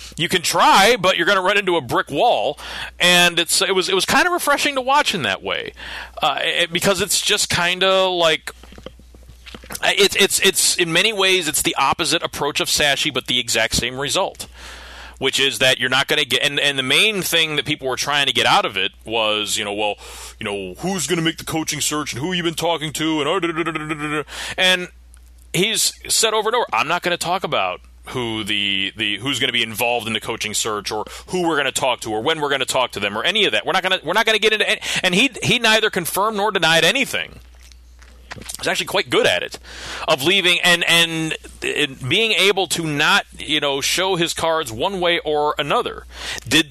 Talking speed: 230 wpm